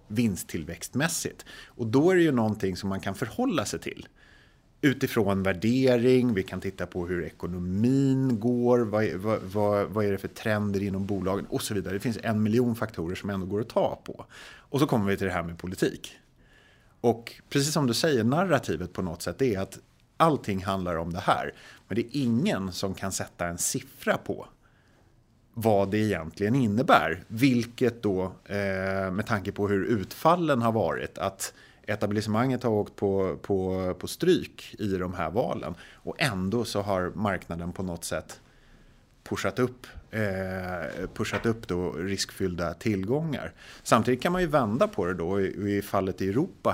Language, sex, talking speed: Swedish, male, 170 wpm